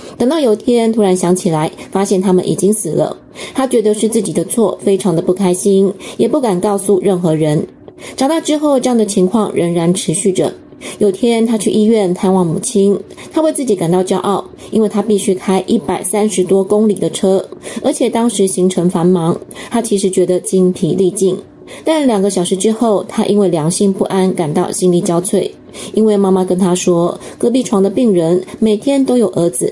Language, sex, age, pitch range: Chinese, female, 20-39, 185-215 Hz